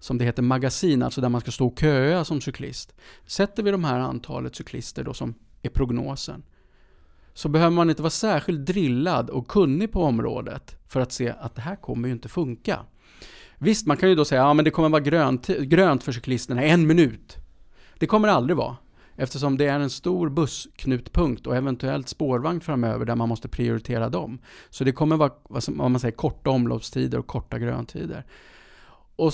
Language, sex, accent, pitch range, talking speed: Swedish, male, Norwegian, 120-155 Hz, 190 wpm